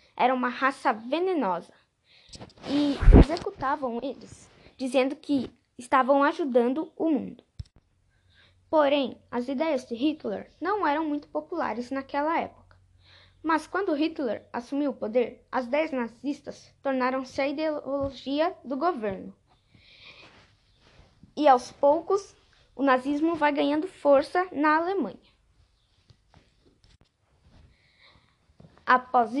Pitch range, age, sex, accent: 255-315 Hz, 10-29, female, Brazilian